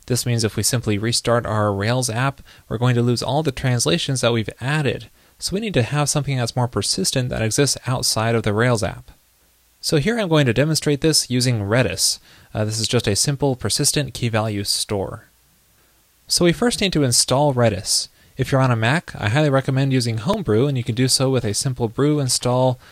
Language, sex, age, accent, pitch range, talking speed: English, male, 20-39, American, 105-135 Hz, 210 wpm